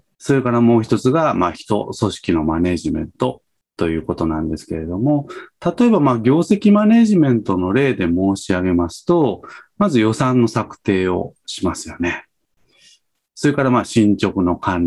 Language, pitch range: Japanese, 90-150 Hz